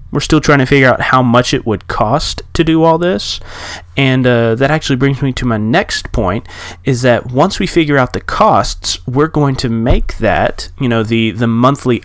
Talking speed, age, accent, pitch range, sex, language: 215 wpm, 30-49, American, 110-140 Hz, male, English